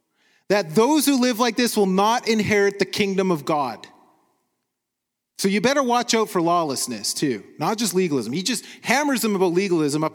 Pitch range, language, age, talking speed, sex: 160-220 Hz, English, 30-49, 185 wpm, male